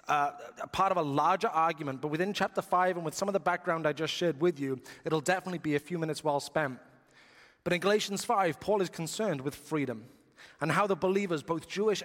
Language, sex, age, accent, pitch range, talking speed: English, male, 30-49, British, 145-185 Hz, 225 wpm